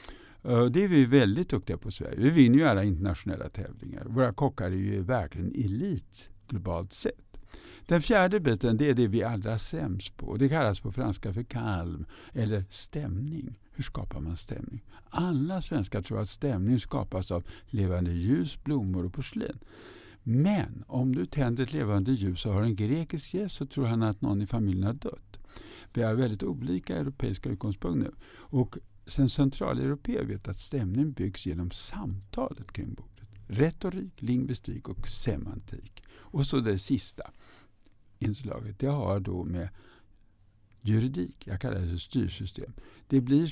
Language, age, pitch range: Swedish, 60-79, 100-135 Hz